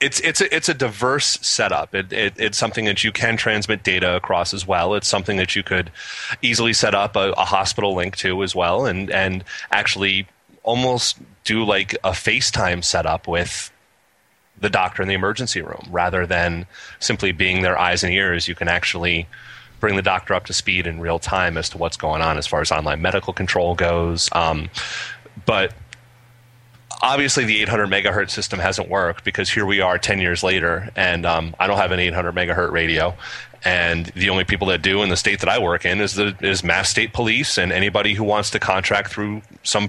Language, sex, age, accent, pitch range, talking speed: English, male, 30-49, American, 90-105 Hz, 200 wpm